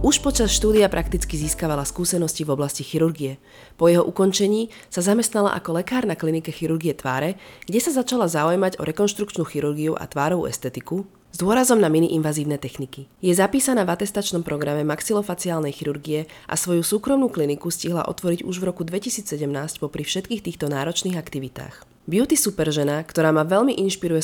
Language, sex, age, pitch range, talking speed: Slovak, female, 30-49, 150-190 Hz, 160 wpm